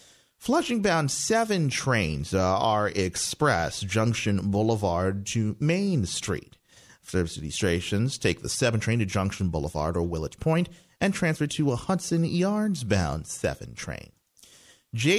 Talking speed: 125 wpm